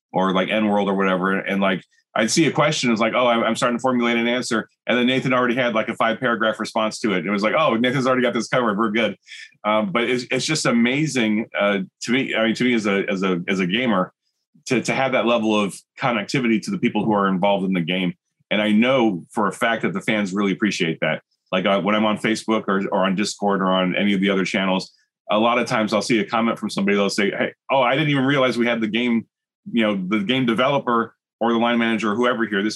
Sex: male